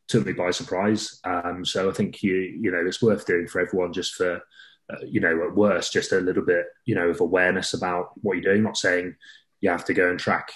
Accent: British